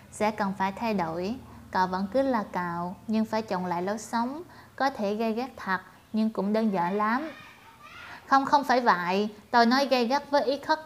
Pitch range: 190-235 Hz